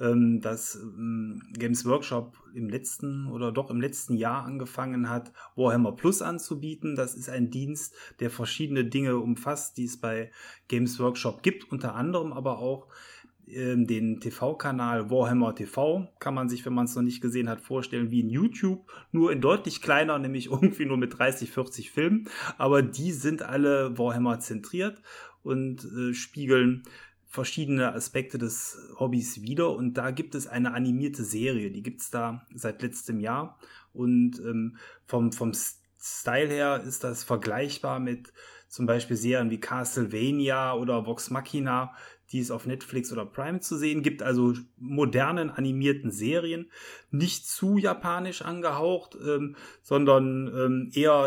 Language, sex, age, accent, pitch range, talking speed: German, male, 30-49, German, 120-140 Hz, 150 wpm